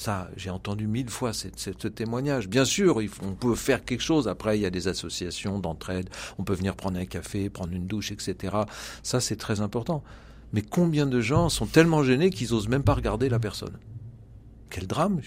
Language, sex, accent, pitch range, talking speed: French, male, French, 100-135 Hz, 200 wpm